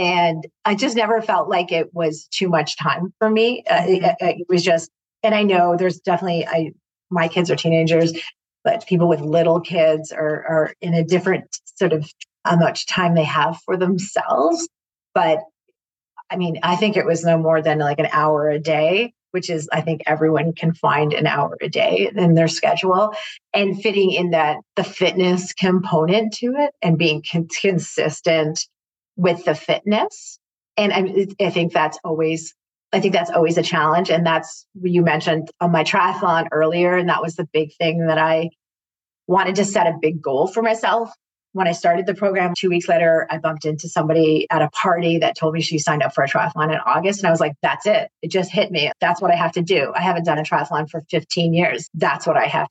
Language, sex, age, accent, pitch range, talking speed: English, female, 30-49, American, 160-190 Hz, 205 wpm